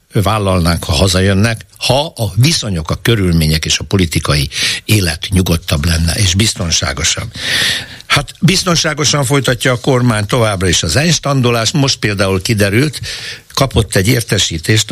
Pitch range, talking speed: 95-125 Hz, 125 wpm